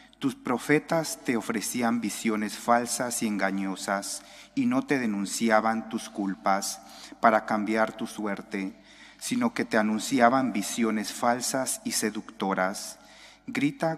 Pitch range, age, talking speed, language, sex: 100-120 Hz, 40-59, 115 wpm, English, male